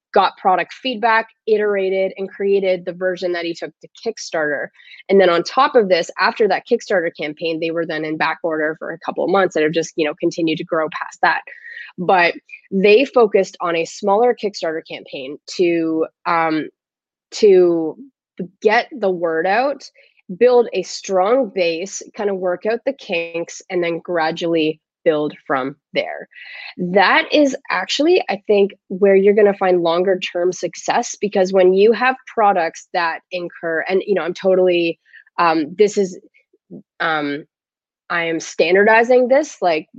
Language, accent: English, American